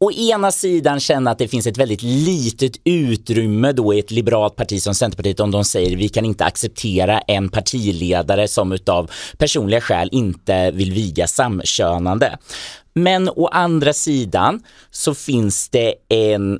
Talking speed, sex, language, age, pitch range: 160 wpm, male, Swedish, 30-49, 105-135 Hz